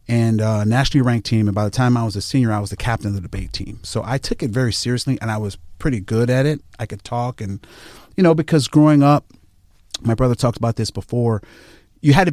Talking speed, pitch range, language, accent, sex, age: 250 wpm, 110-140 Hz, English, American, male, 30-49